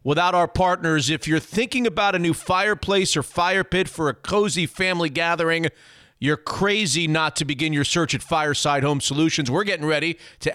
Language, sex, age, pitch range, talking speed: English, male, 40-59, 150-185 Hz, 190 wpm